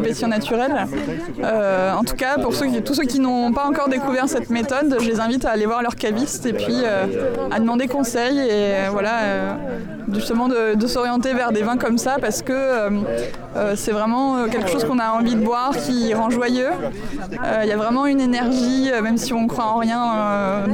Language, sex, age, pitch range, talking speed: French, female, 20-39, 220-255 Hz, 210 wpm